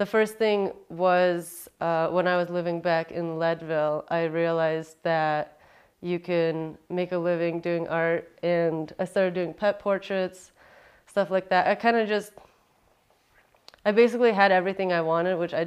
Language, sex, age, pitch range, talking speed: English, female, 20-39, 160-180 Hz, 165 wpm